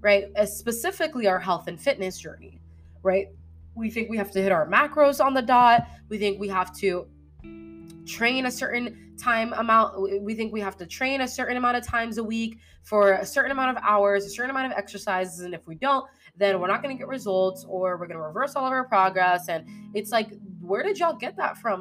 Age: 20-39